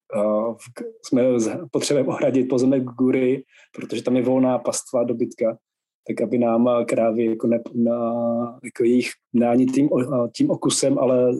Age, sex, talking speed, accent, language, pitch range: 20-39, male, 140 wpm, native, Czech, 120-140 Hz